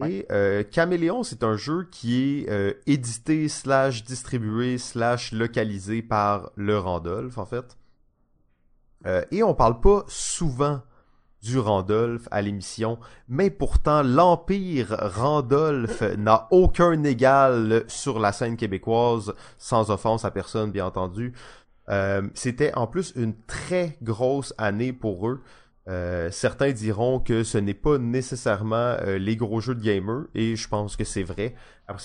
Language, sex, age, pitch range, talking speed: French, male, 30-49, 105-135 Hz, 140 wpm